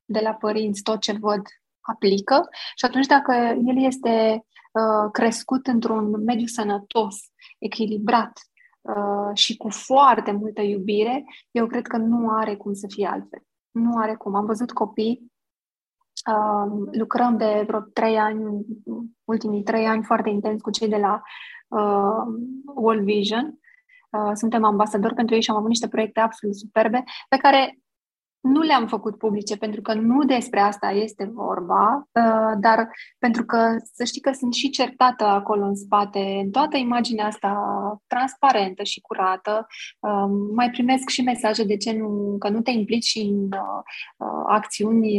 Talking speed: 145 wpm